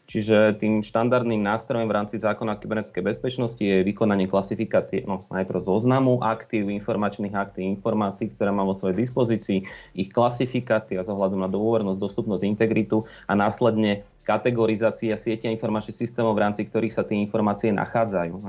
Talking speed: 150 wpm